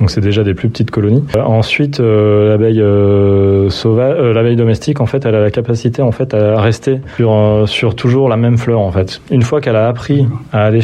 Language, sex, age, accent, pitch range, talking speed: French, male, 20-39, French, 105-125 Hz, 235 wpm